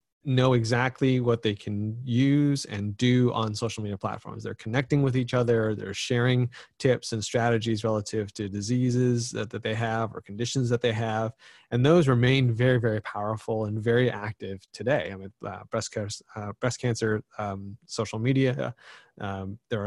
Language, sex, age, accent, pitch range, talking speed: English, male, 20-39, American, 110-125 Hz, 180 wpm